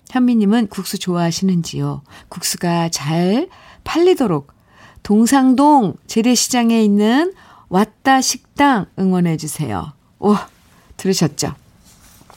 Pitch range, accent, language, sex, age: 175-225 Hz, native, Korean, female, 50-69